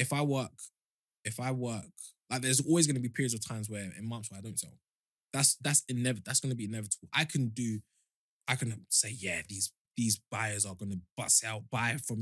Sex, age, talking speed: male, 20-39, 235 wpm